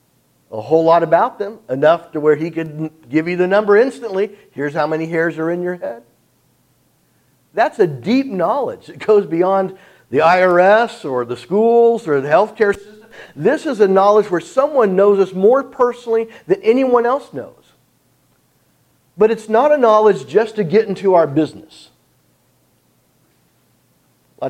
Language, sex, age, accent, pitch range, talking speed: English, male, 50-69, American, 145-215 Hz, 160 wpm